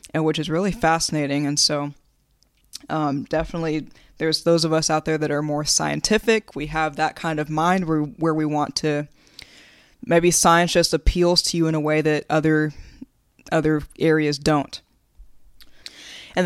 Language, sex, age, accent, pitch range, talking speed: English, female, 20-39, American, 150-170 Hz, 160 wpm